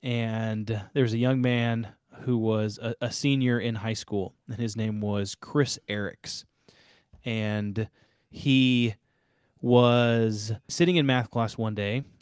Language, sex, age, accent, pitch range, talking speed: English, male, 20-39, American, 110-130 Hz, 140 wpm